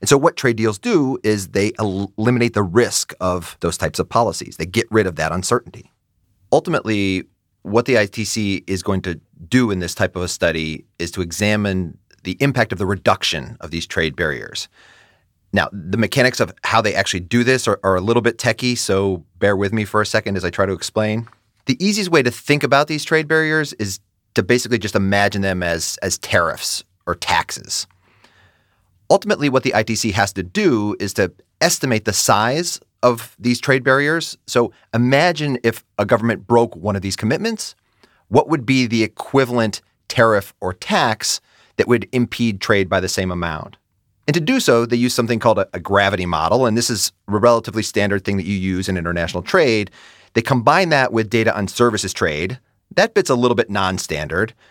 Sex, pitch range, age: male, 95-120 Hz, 30-49